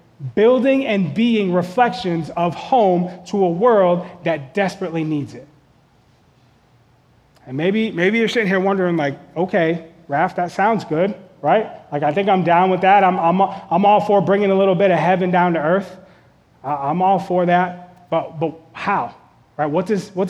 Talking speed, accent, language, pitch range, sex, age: 175 wpm, American, English, 145-185 Hz, male, 30-49